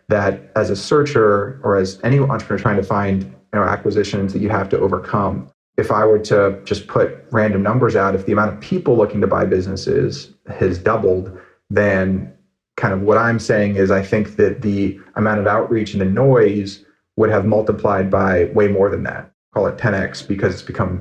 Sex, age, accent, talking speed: male, 30-49, American, 195 wpm